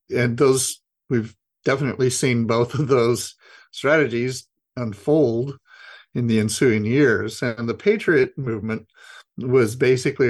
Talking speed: 115 wpm